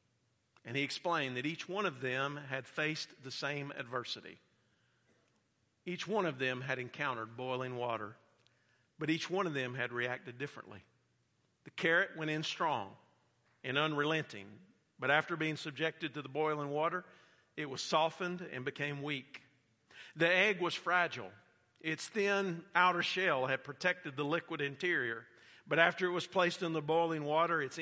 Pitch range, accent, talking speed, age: 125-170 Hz, American, 155 wpm, 50-69